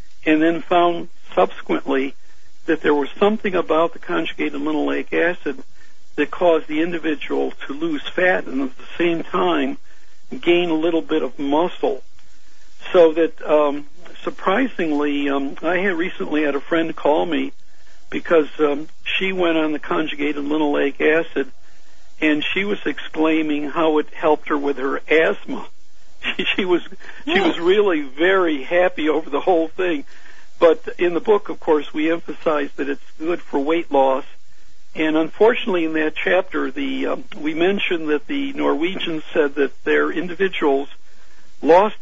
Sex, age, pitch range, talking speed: male, 60-79, 150-180 Hz, 150 wpm